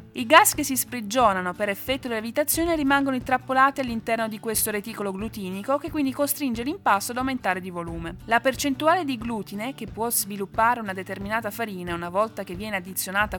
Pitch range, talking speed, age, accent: 205-275 Hz, 175 wpm, 20-39, native